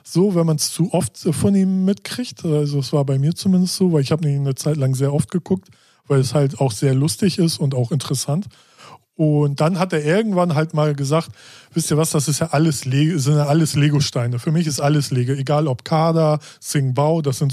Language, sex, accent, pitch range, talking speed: German, male, German, 135-165 Hz, 230 wpm